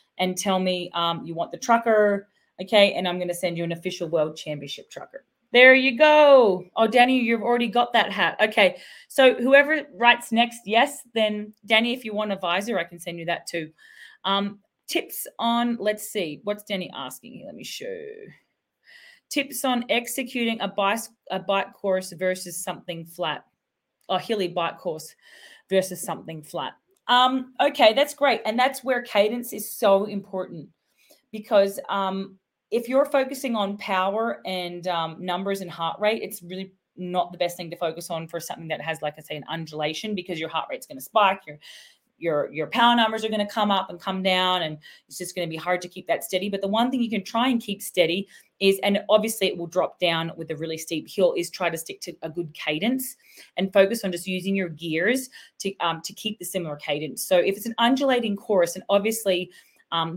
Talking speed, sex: 200 wpm, female